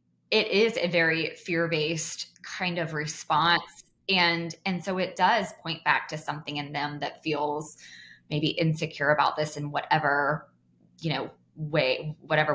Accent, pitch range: American, 150-175 Hz